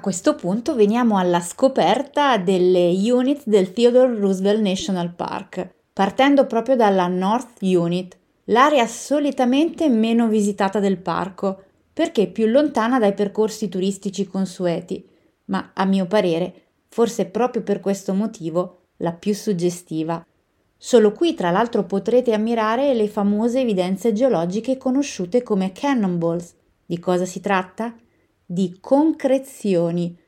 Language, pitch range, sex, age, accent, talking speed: Italian, 185-235 Hz, female, 30-49, native, 125 wpm